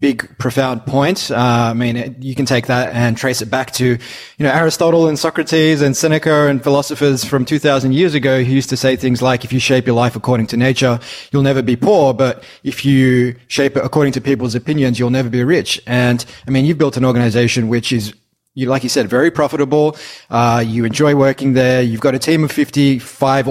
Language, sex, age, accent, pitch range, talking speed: English, male, 20-39, Australian, 125-150 Hz, 215 wpm